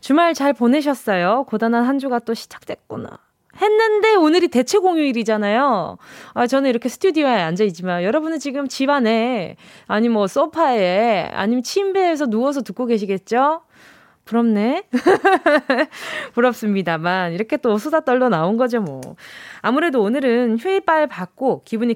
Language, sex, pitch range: Korean, female, 200-300 Hz